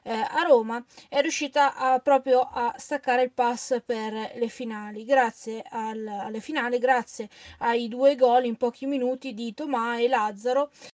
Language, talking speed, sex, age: Italian, 155 wpm, female, 20-39